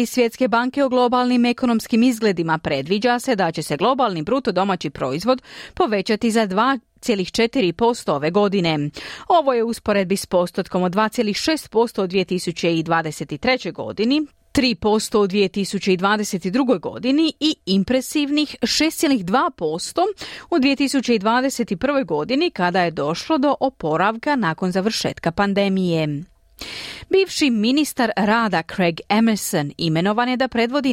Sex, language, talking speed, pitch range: female, Croatian, 110 wpm, 185-270 Hz